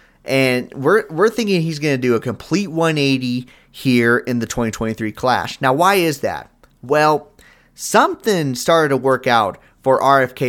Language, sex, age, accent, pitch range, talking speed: English, male, 30-49, American, 125-165 Hz, 160 wpm